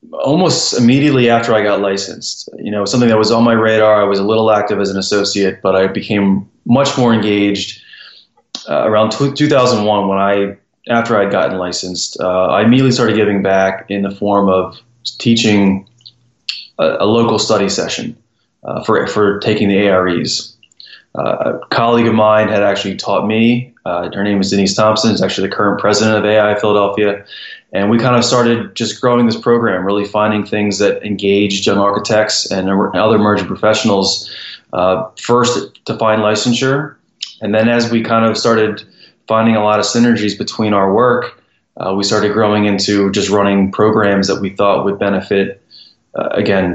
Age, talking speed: 20-39, 175 wpm